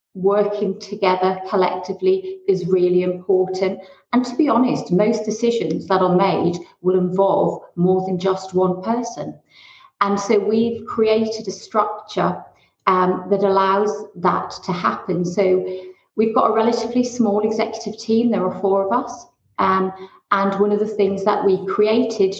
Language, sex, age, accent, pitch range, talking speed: English, female, 40-59, British, 190-225 Hz, 150 wpm